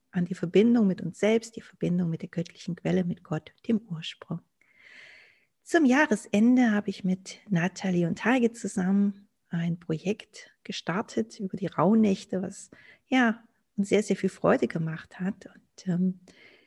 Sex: female